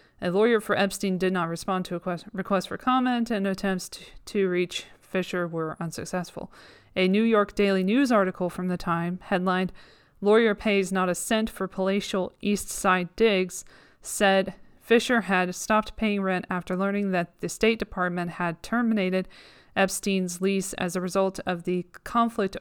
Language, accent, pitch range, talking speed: English, American, 185-215 Hz, 160 wpm